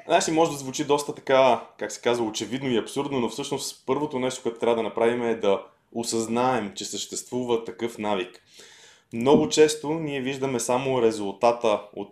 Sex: male